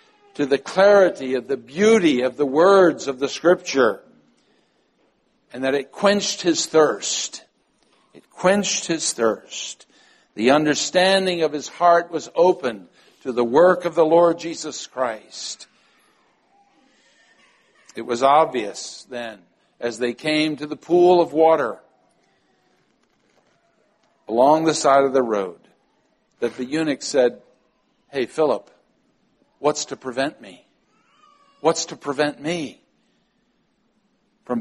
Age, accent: 60-79, American